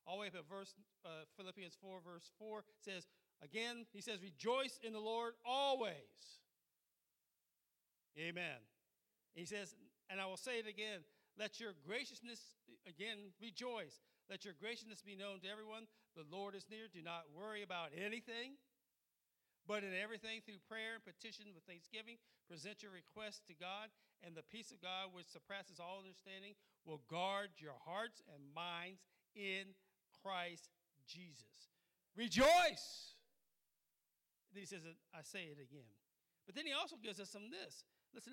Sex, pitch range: male, 170-220 Hz